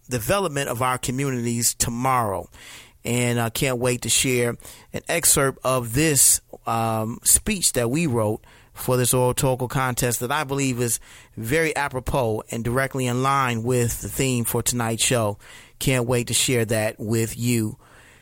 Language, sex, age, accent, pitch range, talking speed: English, male, 30-49, American, 120-140 Hz, 160 wpm